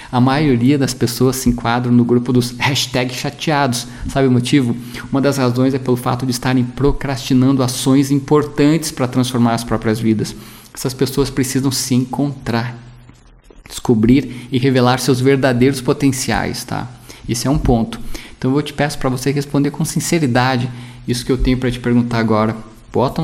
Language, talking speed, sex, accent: Portuguese, 160 wpm, male, Brazilian